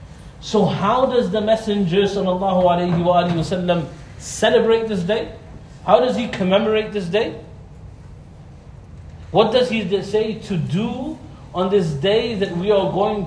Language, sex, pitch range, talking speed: English, male, 155-210 Hz, 120 wpm